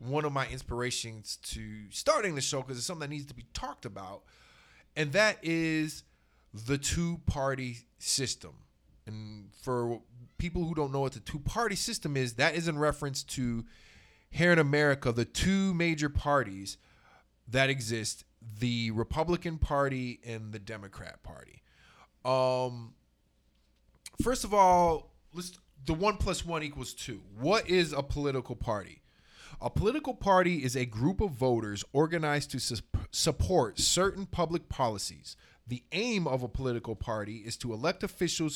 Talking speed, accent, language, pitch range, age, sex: 150 wpm, American, English, 110-155 Hz, 20-39, male